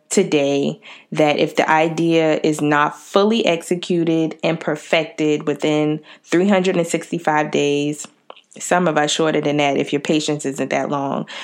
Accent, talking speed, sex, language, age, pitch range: American, 135 wpm, female, English, 20-39, 155-195 Hz